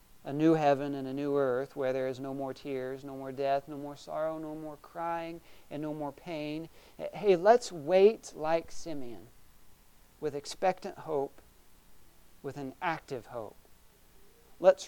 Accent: American